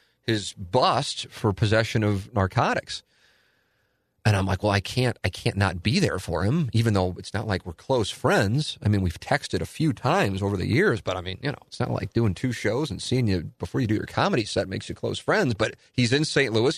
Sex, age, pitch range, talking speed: male, 40-59, 100-125 Hz, 235 wpm